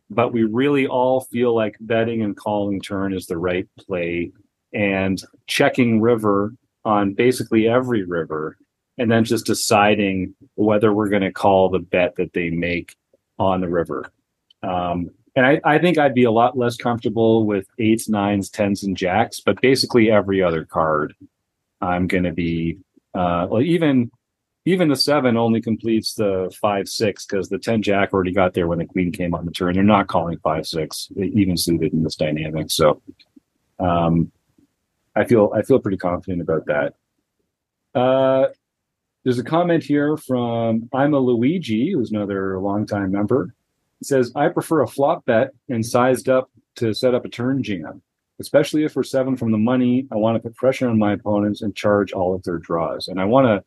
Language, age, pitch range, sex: English, 40-59, 95-125 Hz, male